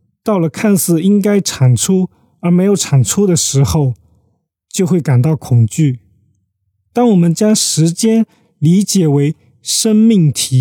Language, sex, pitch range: Chinese, male, 125-175 Hz